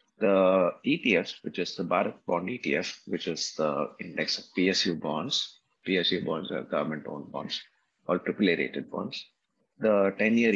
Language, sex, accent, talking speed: English, male, Indian, 140 wpm